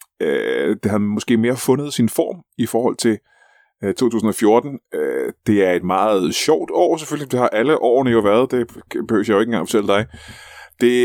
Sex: male